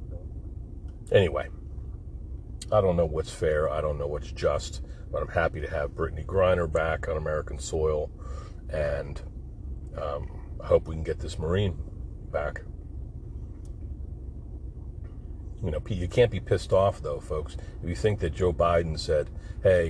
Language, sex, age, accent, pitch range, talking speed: English, male, 40-59, American, 75-90 Hz, 150 wpm